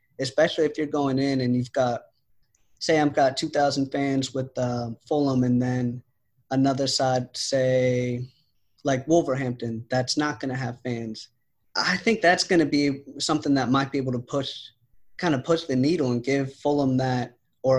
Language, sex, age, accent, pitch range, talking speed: English, male, 20-39, American, 125-150 Hz, 175 wpm